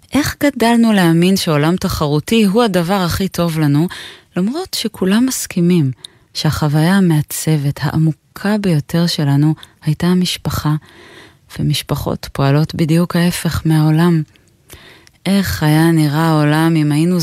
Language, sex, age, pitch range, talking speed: Hebrew, female, 20-39, 145-180 Hz, 110 wpm